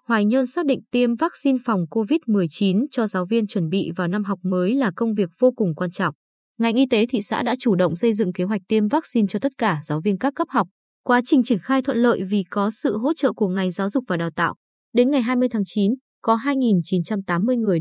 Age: 20-39